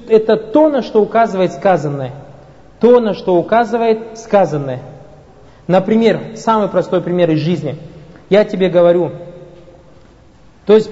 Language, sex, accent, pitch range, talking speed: Russian, male, native, 175-230 Hz, 120 wpm